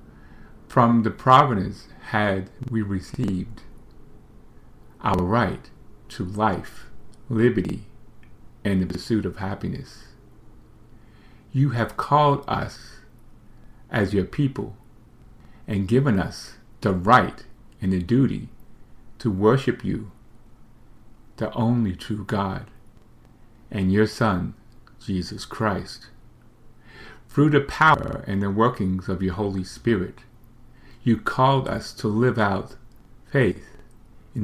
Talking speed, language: 105 wpm, English